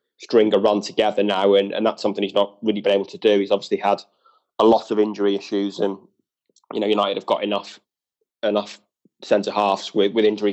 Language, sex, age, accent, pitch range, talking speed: English, male, 20-39, British, 100-110 Hz, 210 wpm